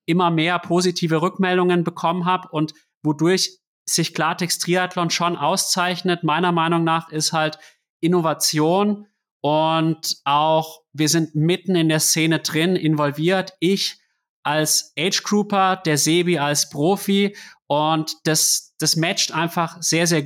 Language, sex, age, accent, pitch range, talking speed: German, male, 30-49, German, 155-175 Hz, 130 wpm